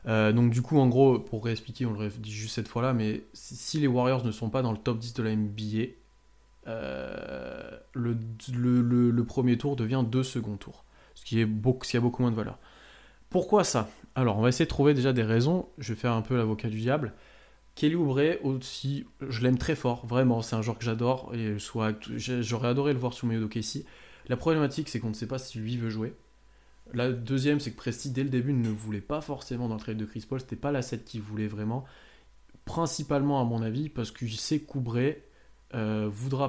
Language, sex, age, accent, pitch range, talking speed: French, male, 20-39, French, 110-130 Hz, 230 wpm